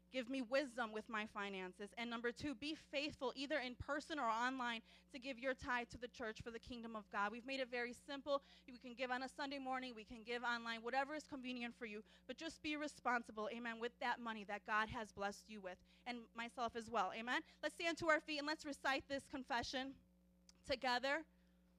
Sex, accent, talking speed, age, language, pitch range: female, American, 220 wpm, 30-49, English, 240-295 Hz